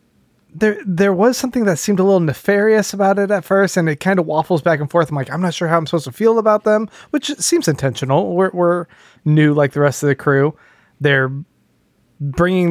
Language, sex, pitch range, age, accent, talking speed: English, male, 145-185 Hz, 20-39, American, 220 wpm